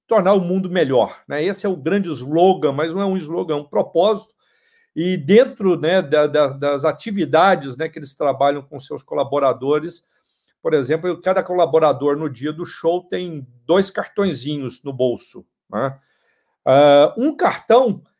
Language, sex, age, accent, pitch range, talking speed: Portuguese, male, 50-69, Brazilian, 150-195 Hz, 150 wpm